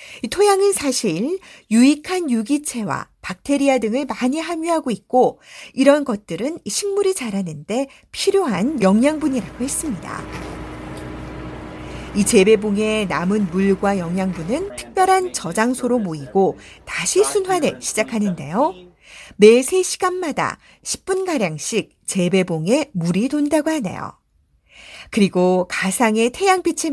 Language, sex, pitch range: Korean, female, 195-315 Hz